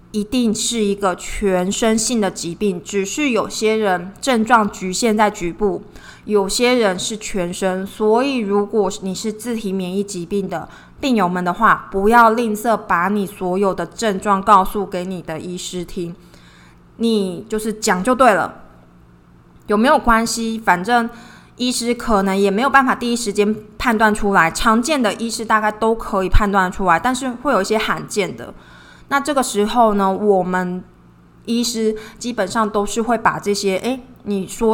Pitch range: 185-230 Hz